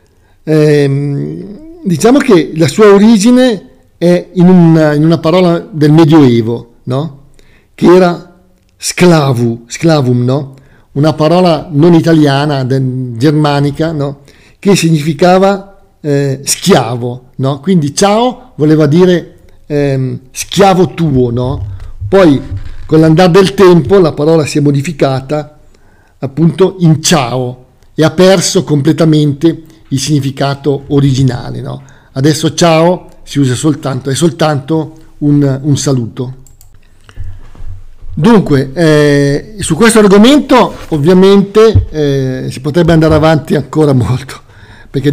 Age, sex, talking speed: 50-69, male, 110 wpm